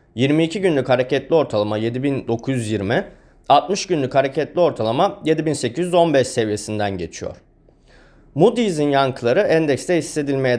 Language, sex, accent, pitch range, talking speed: Turkish, male, native, 130-180 Hz, 90 wpm